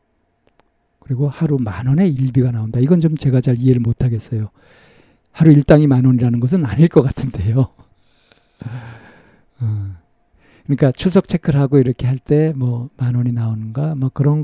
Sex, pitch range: male, 125-165 Hz